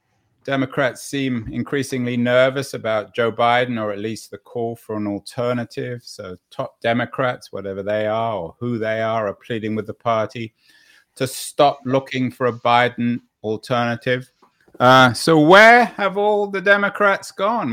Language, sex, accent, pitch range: English, male, British, 120-150 Hz